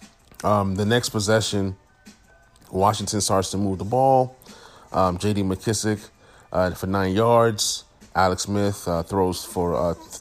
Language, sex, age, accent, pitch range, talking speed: English, male, 30-49, American, 95-110 Hz, 135 wpm